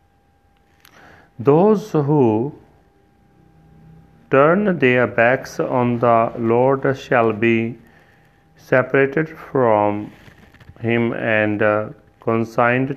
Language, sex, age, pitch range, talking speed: Punjabi, male, 40-59, 105-135 Hz, 70 wpm